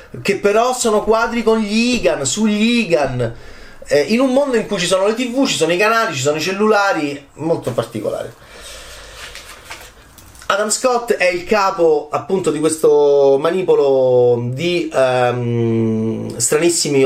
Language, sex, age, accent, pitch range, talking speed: Italian, male, 30-49, native, 120-195 Hz, 145 wpm